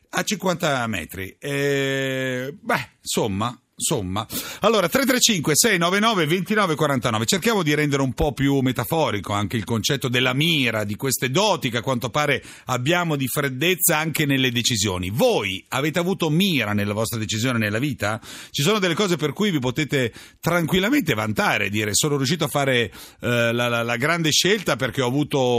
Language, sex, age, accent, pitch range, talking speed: Italian, male, 40-59, native, 105-150 Hz, 155 wpm